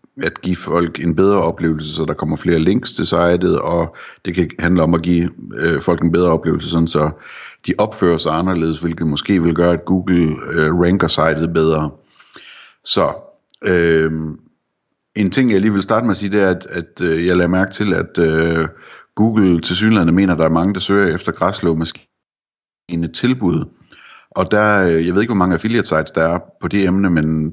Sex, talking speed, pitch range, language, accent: male, 195 wpm, 80-95 Hz, Danish, native